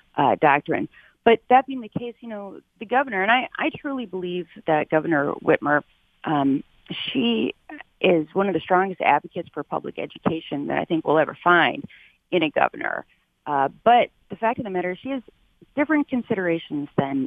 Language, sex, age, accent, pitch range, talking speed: English, female, 40-59, American, 155-210 Hz, 175 wpm